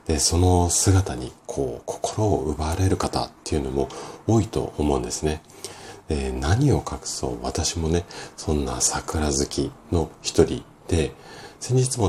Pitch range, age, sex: 75-115 Hz, 40-59, male